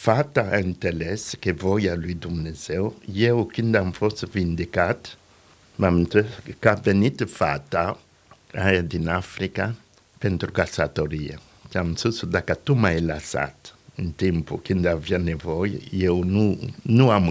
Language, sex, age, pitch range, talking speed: Romanian, male, 60-79, 90-120 Hz, 135 wpm